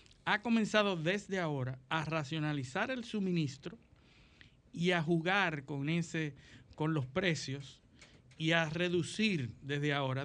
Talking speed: 125 wpm